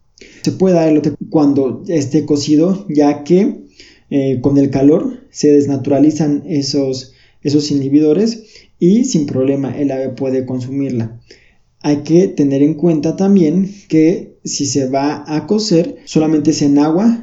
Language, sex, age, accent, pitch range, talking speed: Spanish, male, 20-39, Mexican, 145-185 Hz, 145 wpm